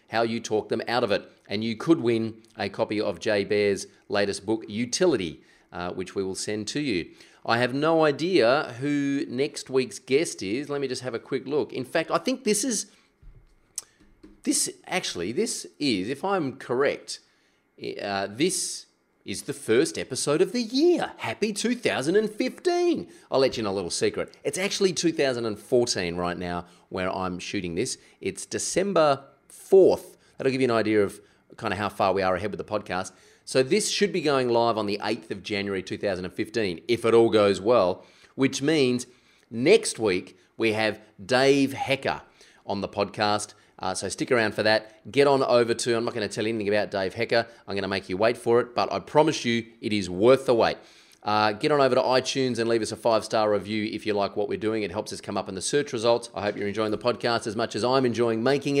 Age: 30-49